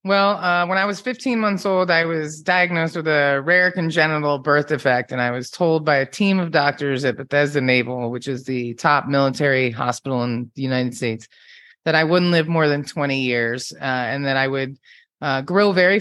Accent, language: American, English